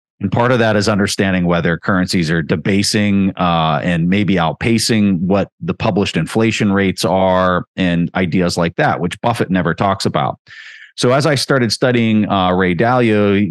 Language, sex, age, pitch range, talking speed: English, male, 30-49, 90-110 Hz, 165 wpm